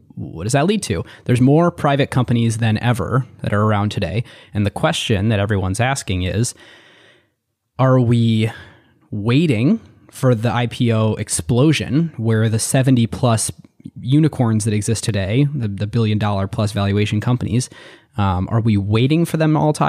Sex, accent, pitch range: male, American, 105-130 Hz